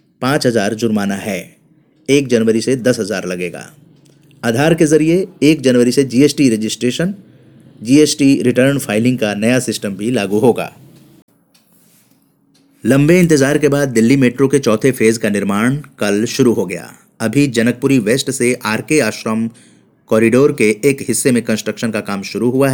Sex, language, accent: male, Hindi, native